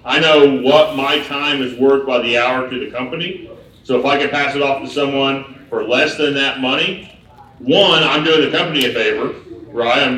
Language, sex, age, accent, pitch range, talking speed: English, male, 40-59, American, 125-165 Hz, 210 wpm